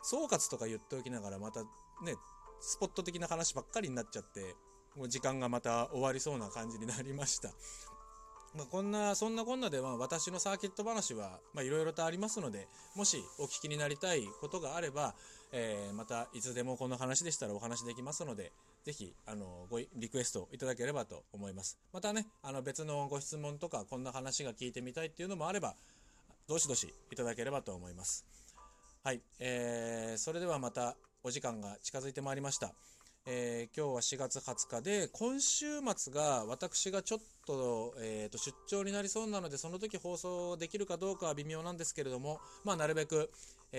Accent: native